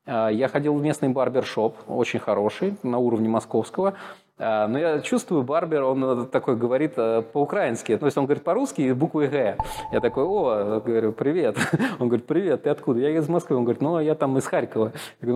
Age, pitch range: 20-39, 110-150 Hz